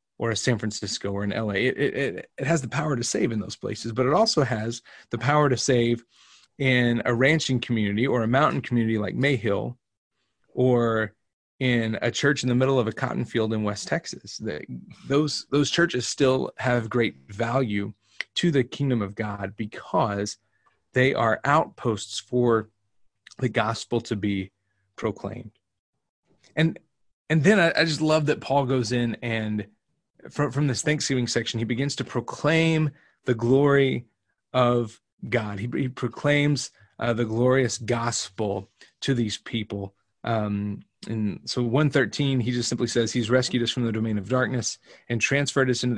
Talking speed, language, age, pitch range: 165 wpm, English, 30-49, 105-130 Hz